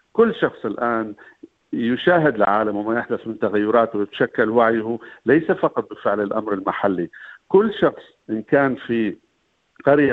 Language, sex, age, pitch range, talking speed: Arabic, male, 50-69, 110-140 Hz, 130 wpm